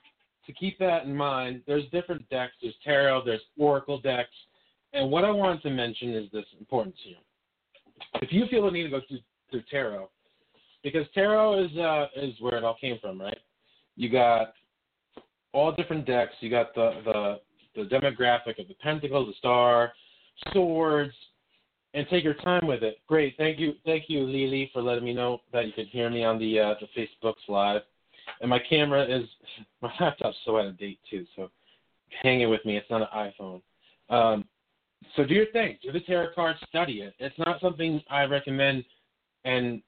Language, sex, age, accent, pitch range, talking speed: English, male, 40-59, American, 115-155 Hz, 190 wpm